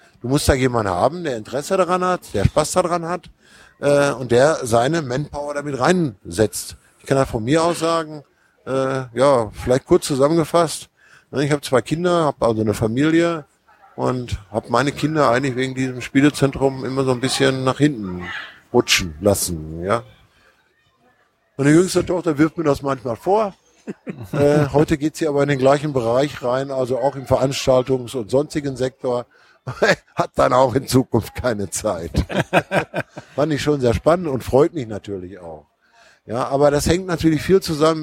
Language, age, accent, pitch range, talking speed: German, 50-69, German, 120-150 Hz, 170 wpm